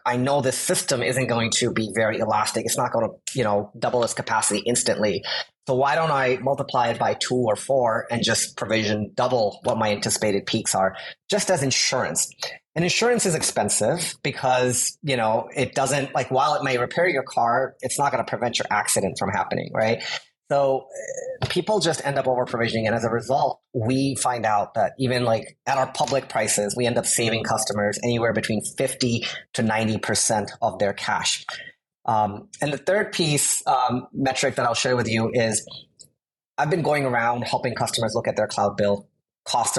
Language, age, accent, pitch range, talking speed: English, 30-49, American, 110-135 Hz, 190 wpm